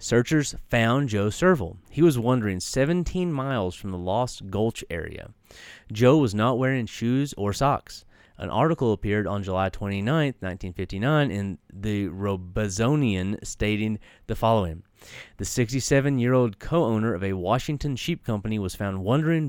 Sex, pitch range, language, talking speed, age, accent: male, 100-130 Hz, English, 140 wpm, 30-49, American